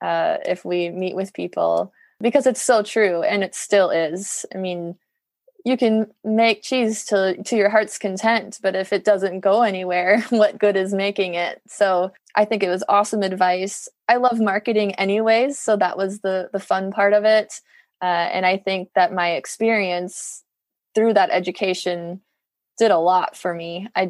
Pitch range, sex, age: 180-210 Hz, female, 20-39